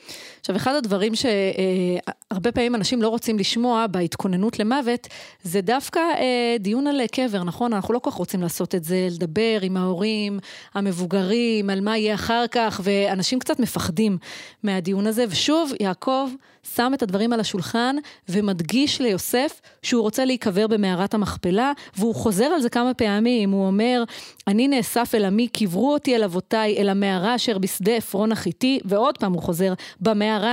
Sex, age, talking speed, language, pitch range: female, 30-49, 160 wpm, Hebrew, 195-245 Hz